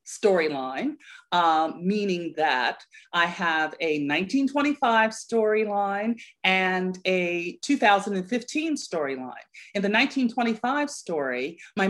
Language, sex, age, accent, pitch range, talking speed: English, female, 40-59, American, 170-215 Hz, 90 wpm